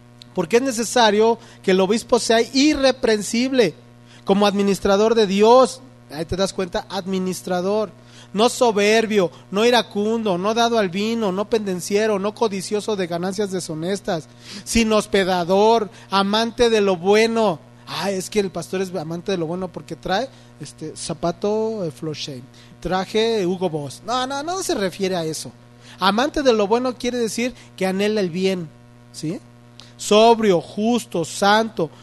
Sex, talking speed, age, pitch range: male, 140 wpm, 40-59, 175-235 Hz